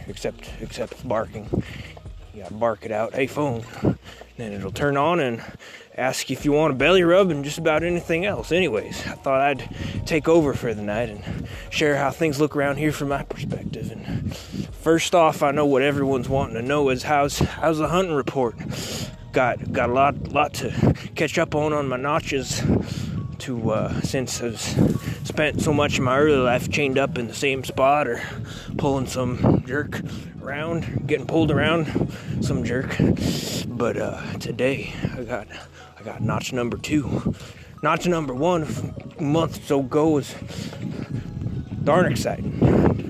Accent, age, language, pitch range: American, 20-39, English, 125-155 Hz